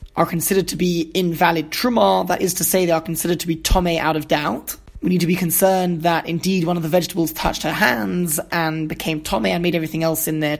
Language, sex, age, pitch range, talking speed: English, male, 20-39, 160-185 Hz, 240 wpm